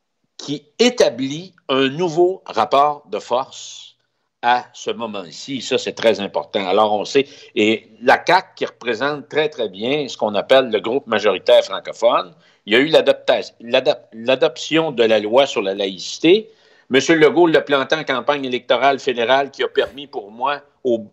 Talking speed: 160 wpm